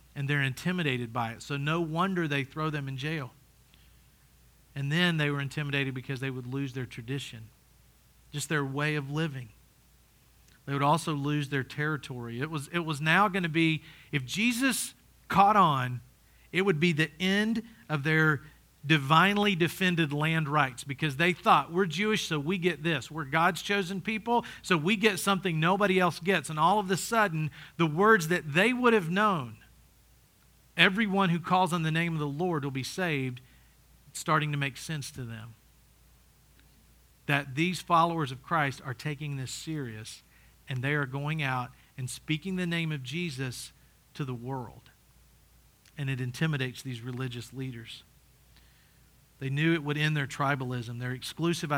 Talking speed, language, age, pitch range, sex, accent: 170 wpm, English, 40-59, 130-170 Hz, male, American